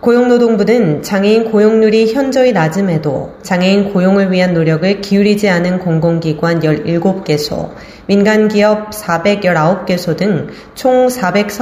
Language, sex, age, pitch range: Korean, female, 30-49, 170-215 Hz